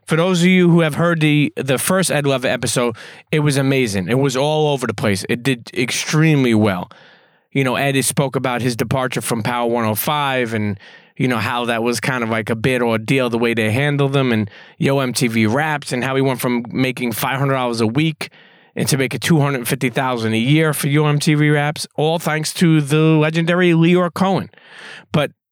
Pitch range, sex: 125-155 Hz, male